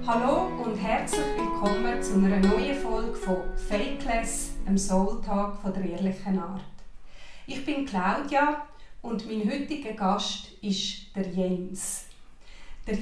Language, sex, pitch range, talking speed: German, female, 195-230 Hz, 120 wpm